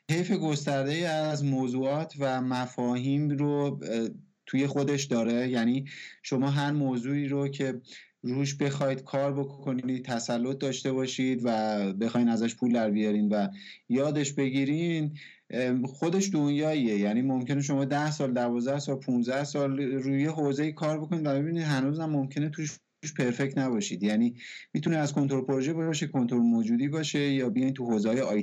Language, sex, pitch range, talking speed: Persian, male, 125-155 Hz, 145 wpm